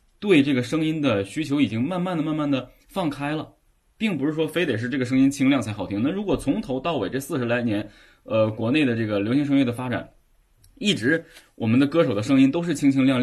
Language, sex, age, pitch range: Chinese, male, 20-39, 115-150 Hz